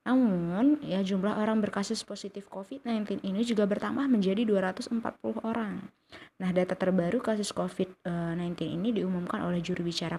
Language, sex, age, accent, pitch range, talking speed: Indonesian, female, 20-39, native, 175-210 Hz, 135 wpm